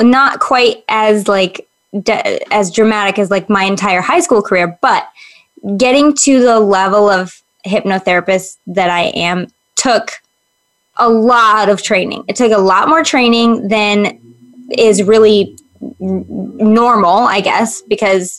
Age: 20-39